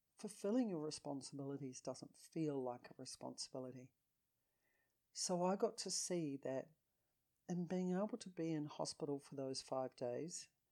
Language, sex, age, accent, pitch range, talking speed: English, female, 50-69, Australian, 135-170 Hz, 140 wpm